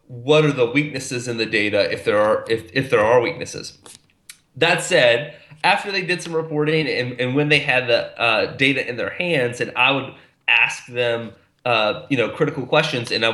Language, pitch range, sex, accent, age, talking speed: English, 125-155 Hz, male, American, 30-49, 205 wpm